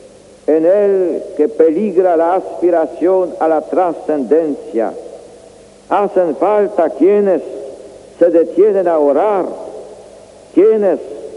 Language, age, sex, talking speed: Spanish, 60-79, male, 90 wpm